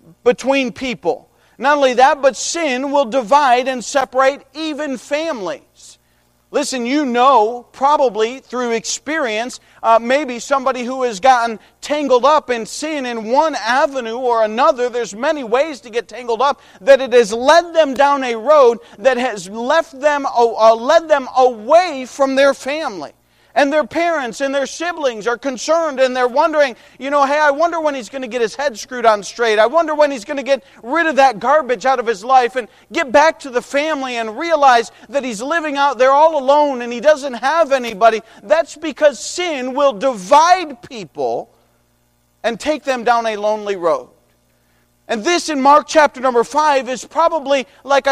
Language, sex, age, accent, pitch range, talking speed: English, male, 40-59, American, 235-295 Hz, 180 wpm